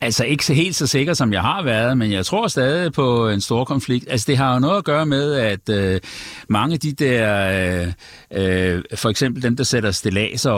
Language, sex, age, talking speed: Danish, male, 60-79, 225 wpm